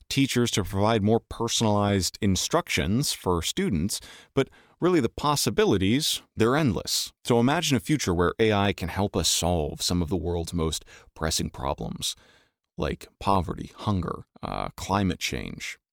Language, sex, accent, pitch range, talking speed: English, male, American, 90-110 Hz, 140 wpm